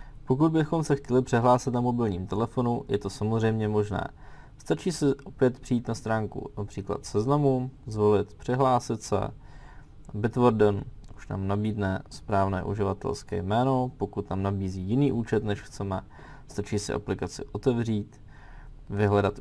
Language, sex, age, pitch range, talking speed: Czech, male, 20-39, 100-125 Hz, 130 wpm